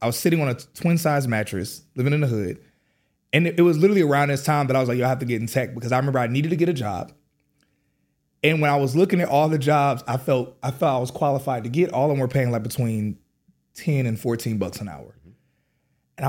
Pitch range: 115-160 Hz